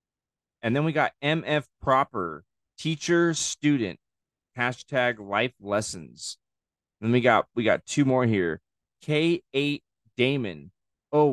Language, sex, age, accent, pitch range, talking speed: English, male, 30-49, American, 100-130 Hz, 120 wpm